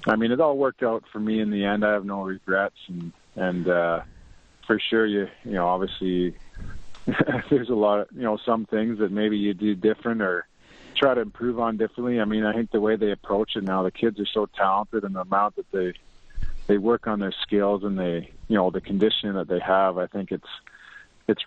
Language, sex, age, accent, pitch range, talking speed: English, male, 40-59, American, 95-110 Hz, 225 wpm